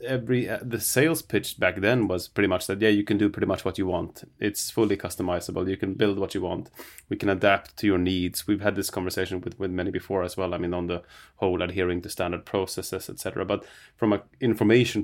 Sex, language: male, English